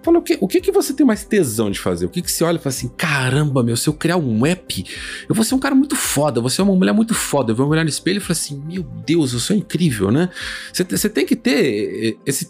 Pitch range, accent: 105-160 Hz, Brazilian